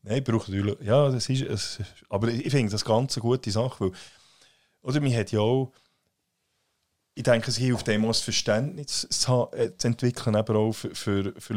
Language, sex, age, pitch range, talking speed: German, male, 30-49, 100-125 Hz, 190 wpm